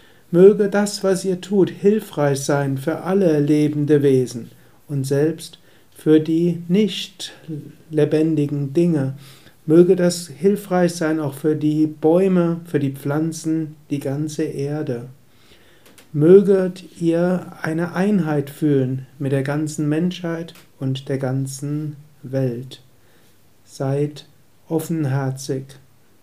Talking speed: 110 wpm